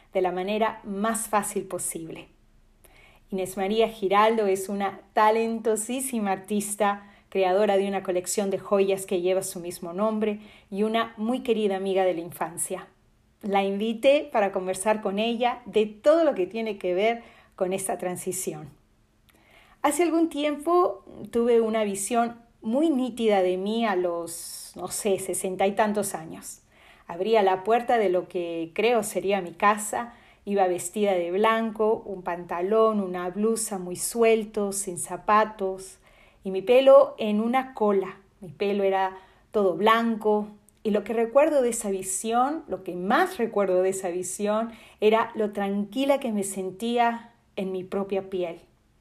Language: Spanish